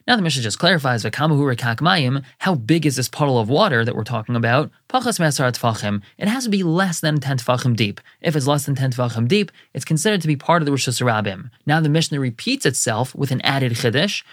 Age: 20-39